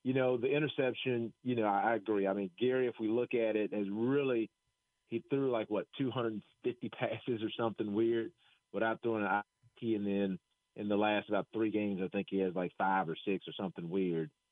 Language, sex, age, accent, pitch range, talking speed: English, male, 40-59, American, 105-130 Hz, 205 wpm